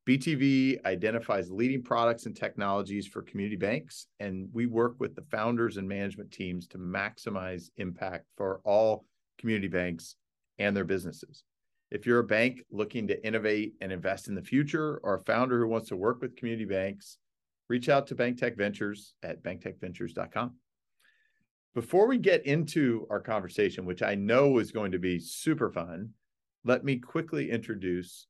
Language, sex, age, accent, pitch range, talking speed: English, male, 40-59, American, 95-120 Hz, 160 wpm